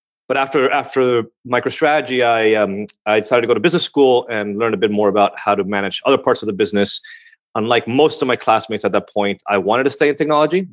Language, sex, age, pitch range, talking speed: English, male, 30-49, 105-145 Hz, 230 wpm